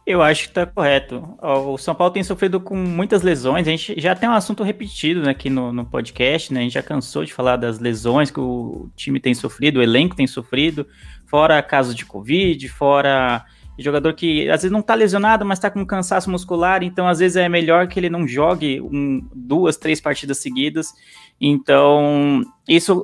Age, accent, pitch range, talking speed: 20-39, Brazilian, 140-180 Hz, 200 wpm